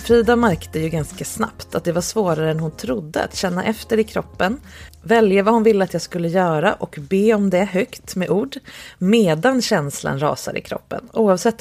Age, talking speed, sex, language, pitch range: 30-49, 200 wpm, female, English, 160-215 Hz